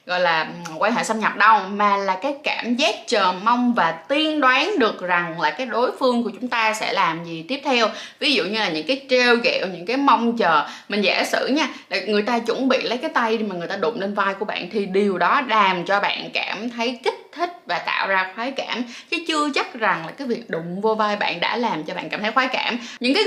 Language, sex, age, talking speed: Vietnamese, female, 20-39, 255 wpm